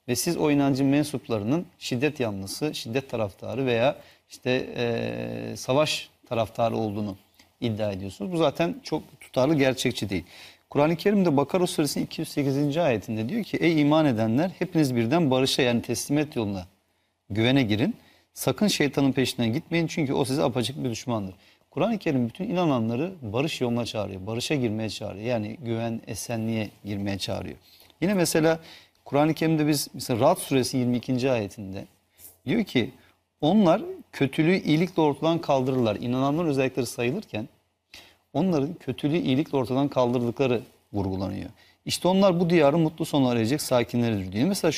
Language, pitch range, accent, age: Turkish, 110-155 Hz, native, 40-59